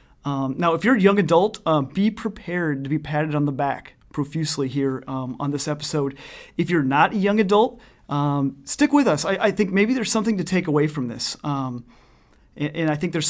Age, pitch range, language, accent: 30-49, 140-180 Hz, English, American